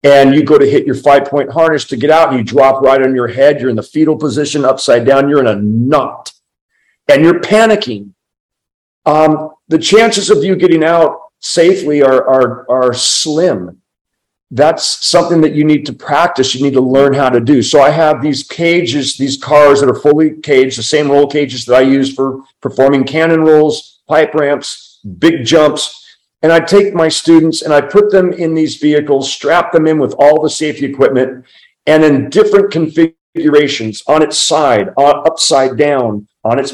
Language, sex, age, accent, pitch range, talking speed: English, male, 50-69, American, 135-165 Hz, 190 wpm